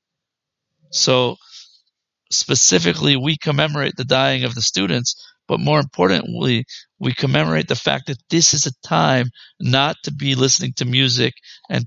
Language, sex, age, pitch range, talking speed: English, male, 50-69, 125-150 Hz, 140 wpm